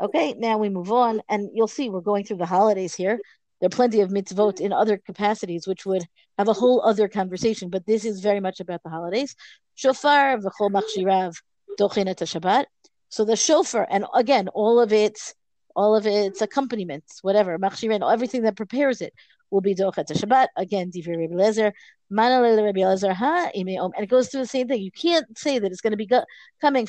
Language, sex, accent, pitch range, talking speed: English, female, American, 200-245 Hz, 185 wpm